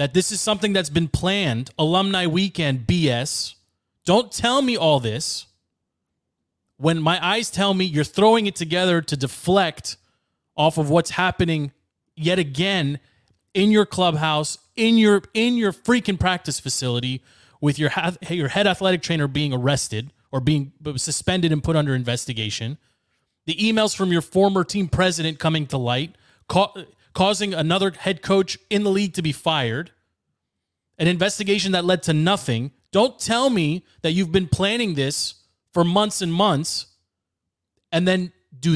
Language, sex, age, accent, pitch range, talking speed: English, male, 30-49, American, 125-195 Hz, 155 wpm